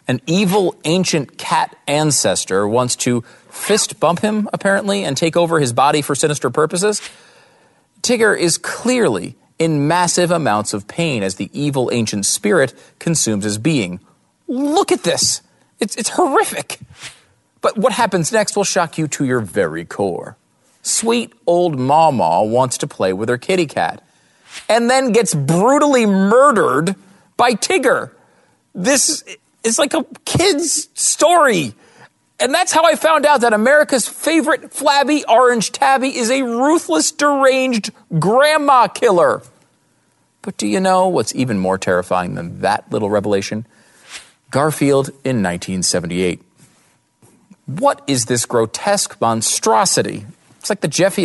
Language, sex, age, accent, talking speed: English, male, 40-59, American, 135 wpm